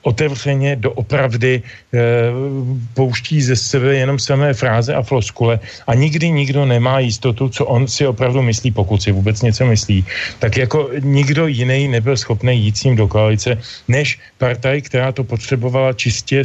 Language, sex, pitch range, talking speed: Slovak, male, 110-140 Hz, 155 wpm